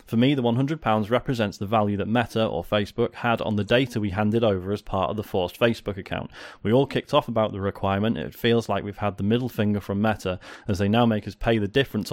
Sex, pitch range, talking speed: male, 105-125 Hz, 245 wpm